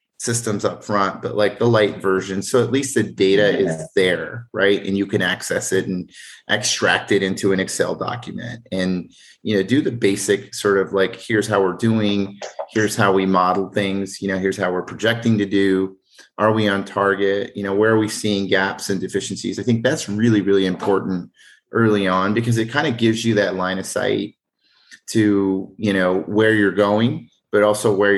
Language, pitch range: English, 95-115 Hz